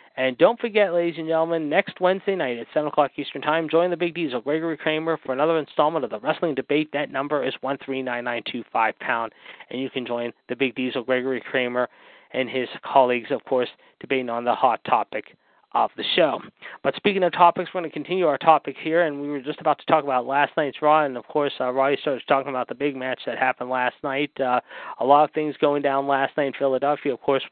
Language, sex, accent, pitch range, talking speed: English, male, American, 130-155 Hz, 225 wpm